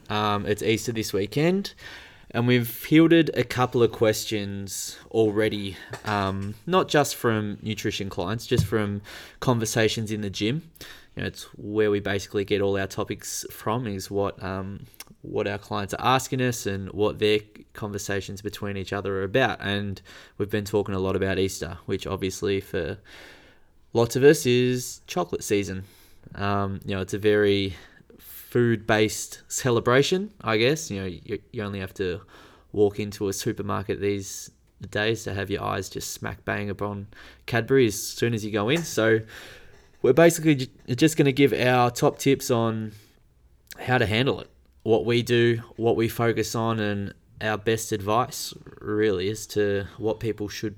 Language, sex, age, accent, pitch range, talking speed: English, male, 20-39, Australian, 100-115 Hz, 165 wpm